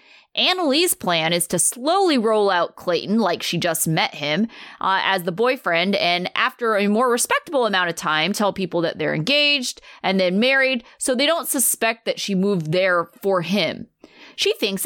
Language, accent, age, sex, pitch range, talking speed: English, American, 20-39, female, 180-260 Hz, 180 wpm